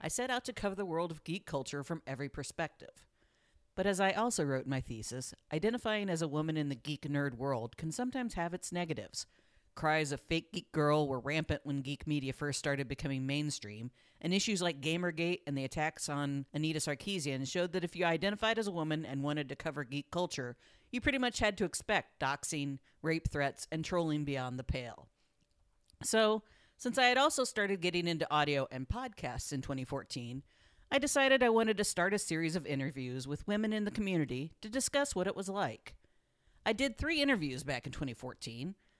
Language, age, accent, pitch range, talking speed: English, 40-59, American, 140-205 Hz, 195 wpm